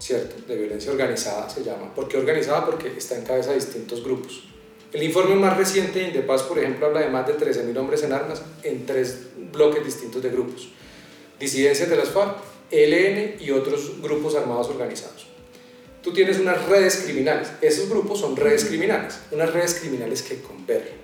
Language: Spanish